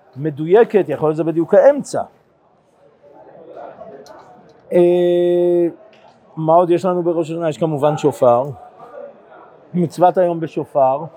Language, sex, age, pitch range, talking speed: Hebrew, male, 50-69, 150-185 Hz, 100 wpm